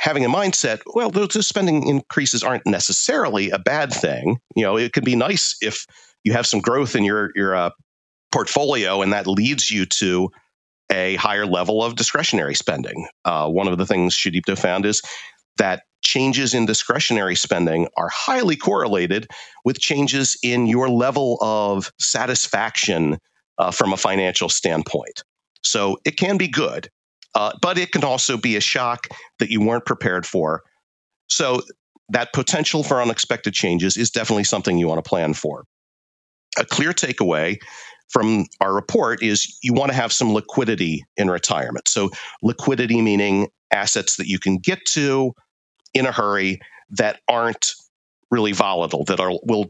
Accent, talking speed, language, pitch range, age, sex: American, 160 wpm, English, 95-135 Hz, 40-59, male